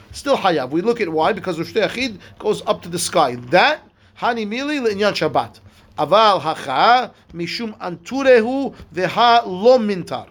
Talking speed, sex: 140 wpm, male